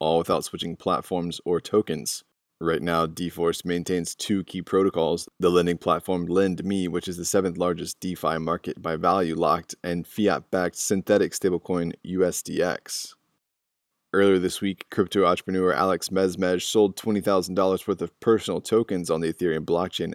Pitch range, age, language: 85-95 Hz, 20-39, English